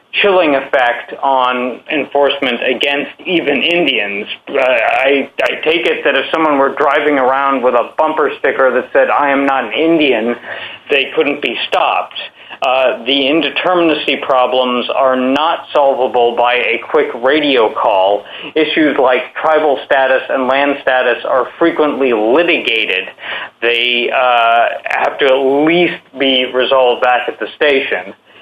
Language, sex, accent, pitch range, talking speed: English, male, American, 130-170 Hz, 140 wpm